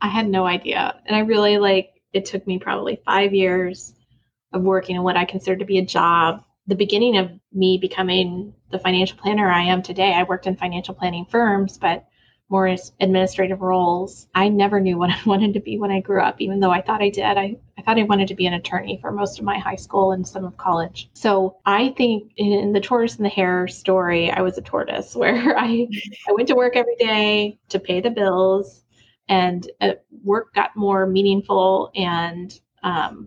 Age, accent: 20-39, American